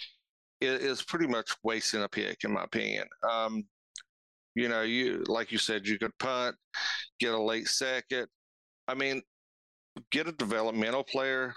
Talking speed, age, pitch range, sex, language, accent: 155 wpm, 40-59, 105-120 Hz, male, English, American